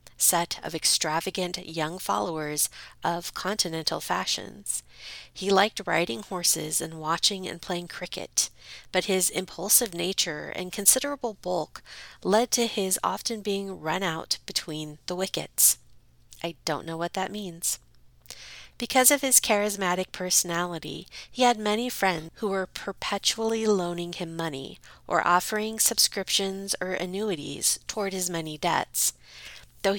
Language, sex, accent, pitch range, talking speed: English, female, American, 170-210 Hz, 130 wpm